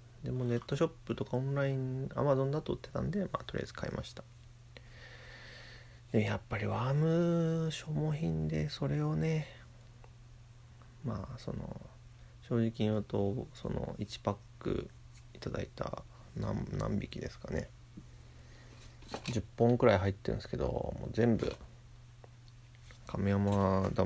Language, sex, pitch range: Japanese, male, 110-125 Hz